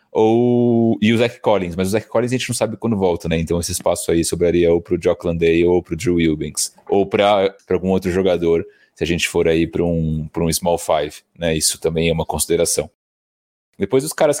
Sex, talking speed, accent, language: male, 235 wpm, Brazilian, Portuguese